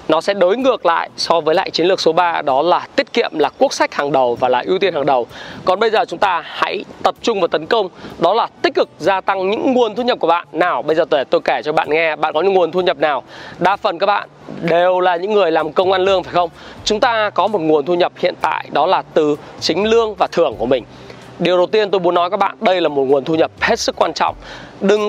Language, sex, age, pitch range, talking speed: Vietnamese, male, 20-39, 170-230 Hz, 280 wpm